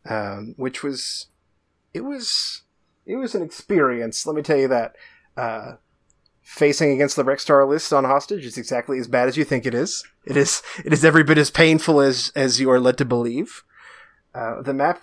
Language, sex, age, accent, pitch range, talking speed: English, male, 20-39, American, 125-155 Hz, 200 wpm